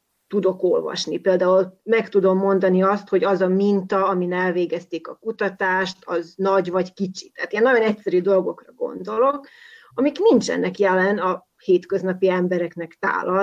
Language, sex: Hungarian, female